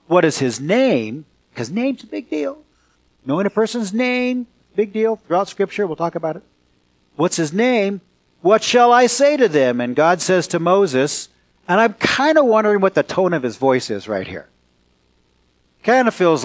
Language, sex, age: English, male, 50-69